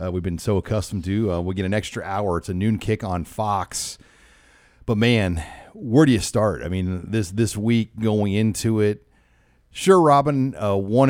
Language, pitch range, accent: English, 95-120 Hz, American